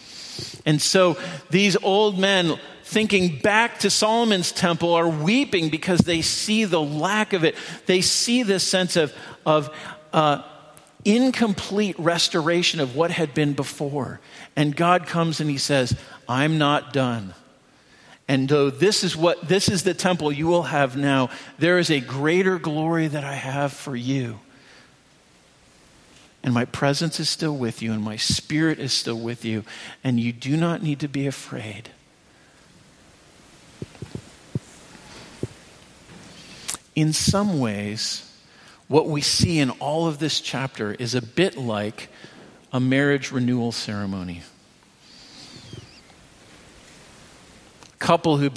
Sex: male